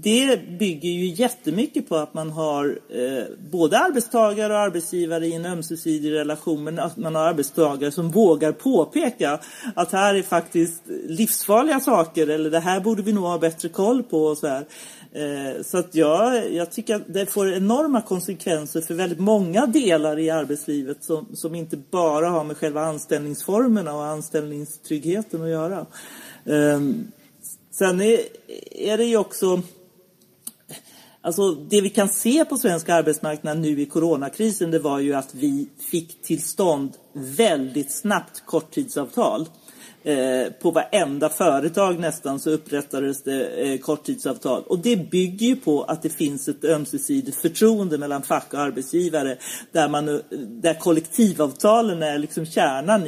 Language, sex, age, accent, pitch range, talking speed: Swedish, male, 40-59, native, 155-210 Hz, 145 wpm